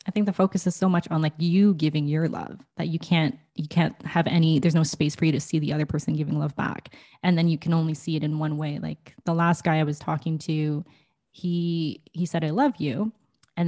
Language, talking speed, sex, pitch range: English, 255 wpm, female, 155-175 Hz